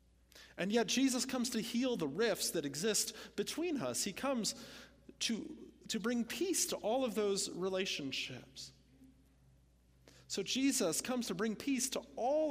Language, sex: English, male